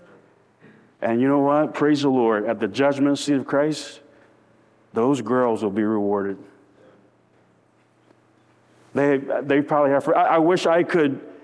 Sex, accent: male, American